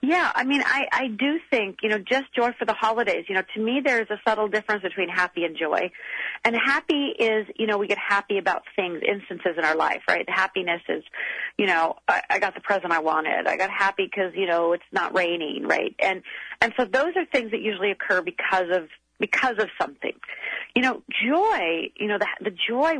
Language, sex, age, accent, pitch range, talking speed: English, female, 40-59, American, 185-245 Hz, 225 wpm